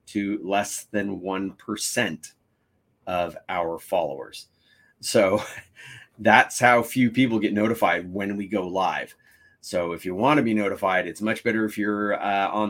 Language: English